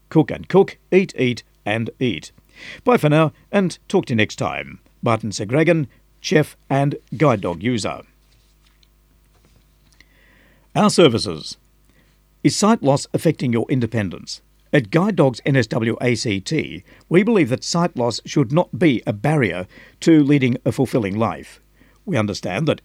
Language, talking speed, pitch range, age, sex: English, 140 wpm, 120-155 Hz, 60-79, male